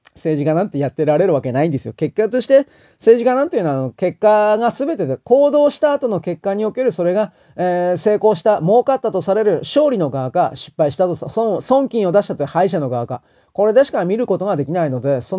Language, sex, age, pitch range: Japanese, male, 30-49, 155-235 Hz